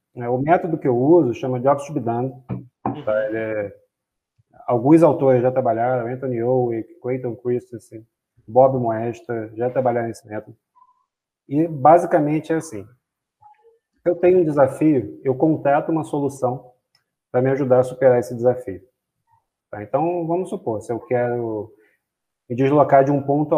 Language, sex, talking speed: Portuguese, male, 140 wpm